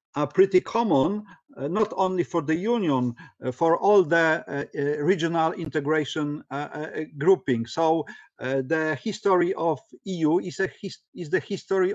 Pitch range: 145-185 Hz